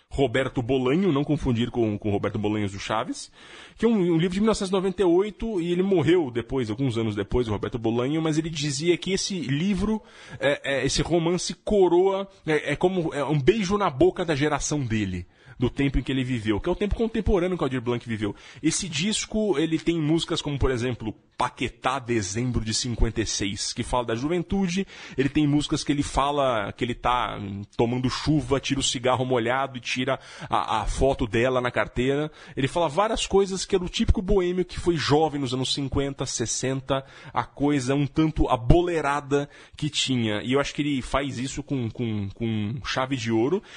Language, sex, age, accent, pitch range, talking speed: Portuguese, male, 20-39, Brazilian, 125-175 Hz, 185 wpm